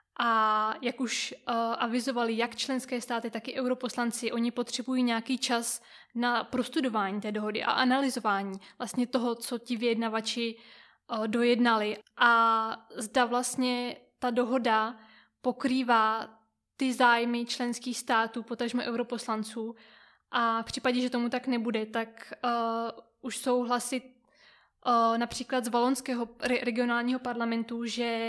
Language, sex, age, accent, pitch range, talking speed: Czech, female, 20-39, native, 230-250 Hz, 115 wpm